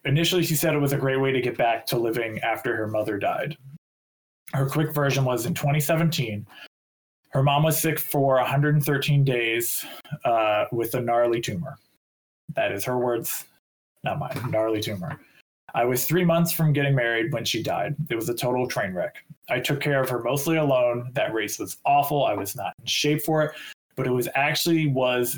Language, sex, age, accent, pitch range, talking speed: English, male, 20-39, American, 120-150 Hz, 195 wpm